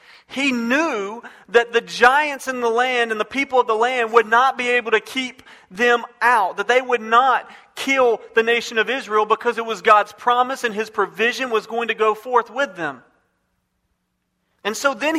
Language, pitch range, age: English, 225-260 Hz, 40-59